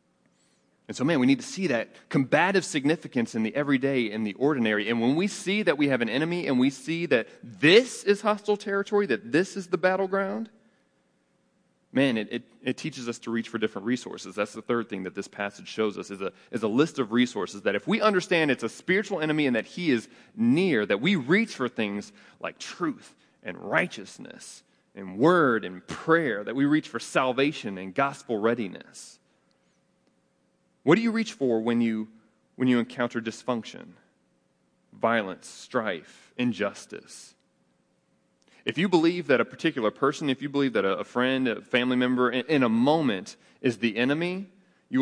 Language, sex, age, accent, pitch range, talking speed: English, male, 30-49, American, 110-165 Hz, 180 wpm